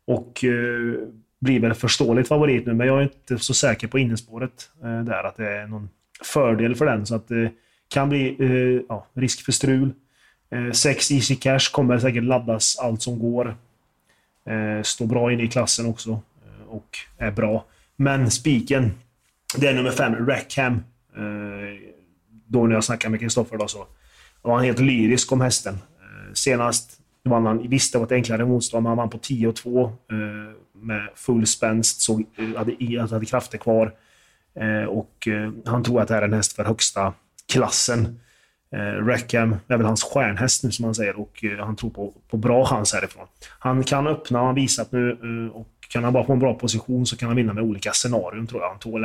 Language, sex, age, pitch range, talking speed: Swedish, male, 30-49, 110-130 Hz, 195 wpm